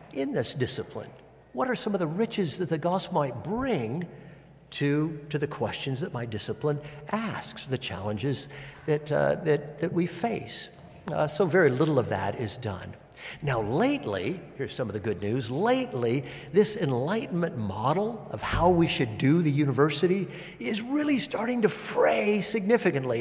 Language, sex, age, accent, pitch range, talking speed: English, male, 50-69, American, 135-200 Hz, 165 wpm